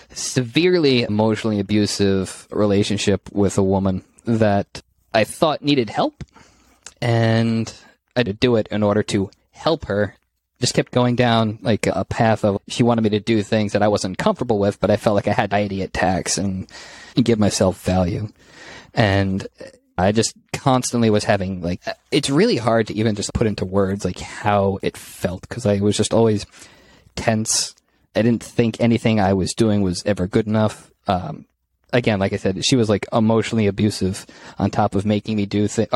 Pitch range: 95-115 Hz